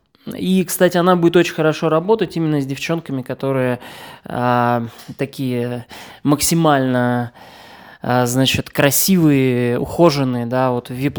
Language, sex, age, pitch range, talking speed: Russian, male, 20-39, 135-180 Hz, 120 wpm